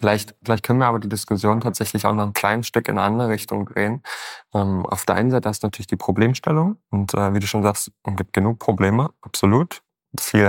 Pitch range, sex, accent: 100-110 Hz, male, German